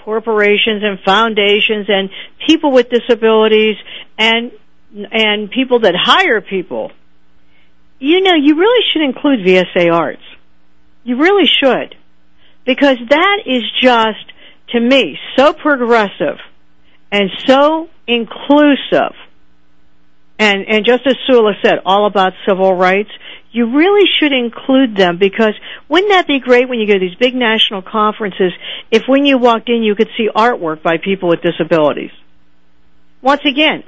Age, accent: 60-79, American